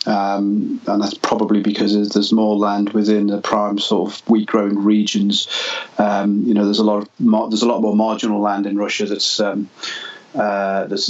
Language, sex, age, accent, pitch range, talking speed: English, male, 30-49, British, 105-115 Hz, 185 wpm